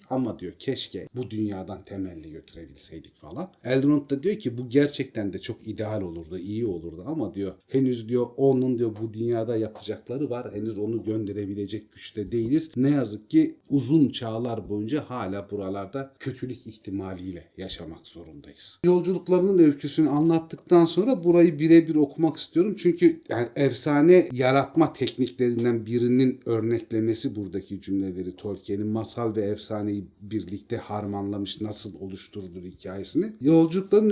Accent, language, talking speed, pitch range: native, Turkish, 130 wpm, 105-150 Hz